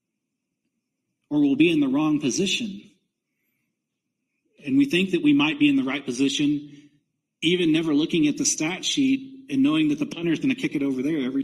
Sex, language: male, English